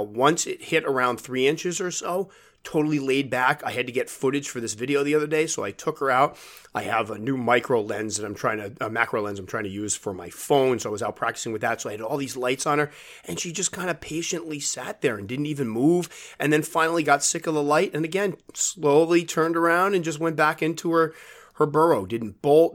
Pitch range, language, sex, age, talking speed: 115-150 Hz, English, male, 30-49, 255 wpm